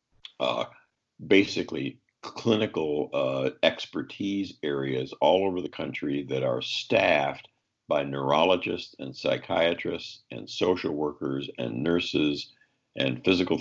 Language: English